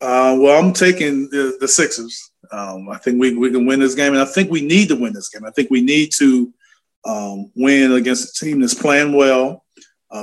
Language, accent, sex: English, American, male